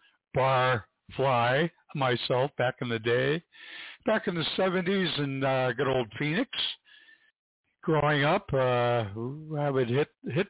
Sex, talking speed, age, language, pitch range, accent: male, 130 wpm, 60-79, English, 115-155 Hz, American